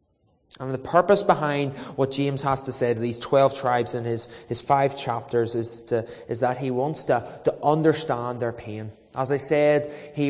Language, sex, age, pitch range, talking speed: English, male, 20-39, 120-145 Hz, 190 wpm